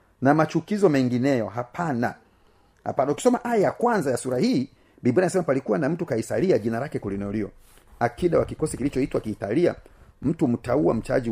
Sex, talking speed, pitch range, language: male, 155 wpm, 110-150 Hz, Swahili